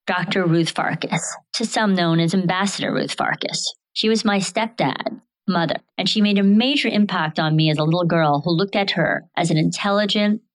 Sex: female